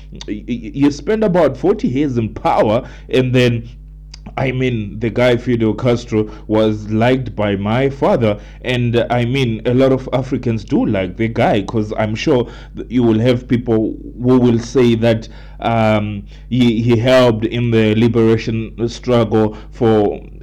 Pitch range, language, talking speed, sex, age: 115-130 Hz, English, 155 wpm, male, 30-49